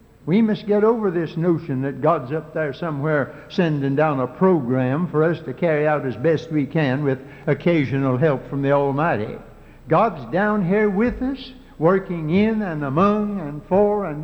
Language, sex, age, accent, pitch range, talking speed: English, male, 60-79, American, 140-195 Hz, 175 wpm